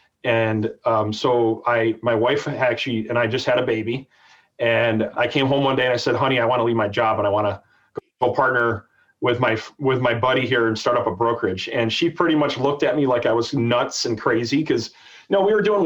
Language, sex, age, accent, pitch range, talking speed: English, male, 30-49, American, 115-150 Hz, 250 wpm